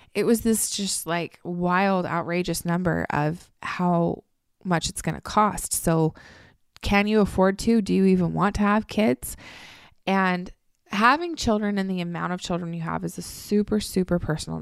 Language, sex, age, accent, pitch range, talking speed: English, female, 20-39, American, 165-200 Hz, 170 wpm